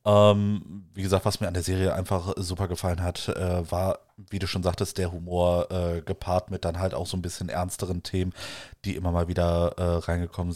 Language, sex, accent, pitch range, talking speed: German, male, German, 90-105 Hz, 210 wpm